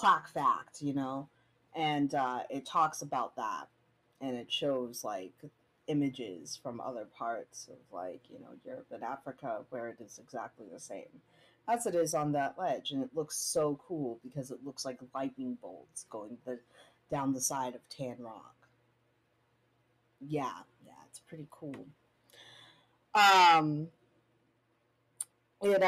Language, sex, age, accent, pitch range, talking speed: English, female, 30-49, American, 125-170 Hz, 145 wpm